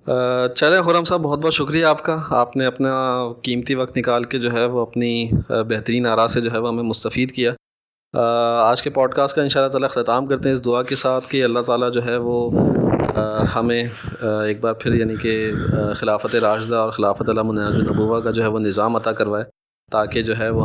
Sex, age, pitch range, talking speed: male, 20-39, 110-125 Hz, 210 wpm